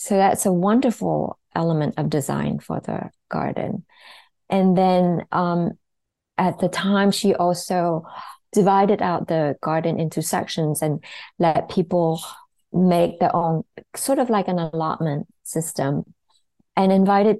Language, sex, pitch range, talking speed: English, female, 160-200 Hz, 130 wpm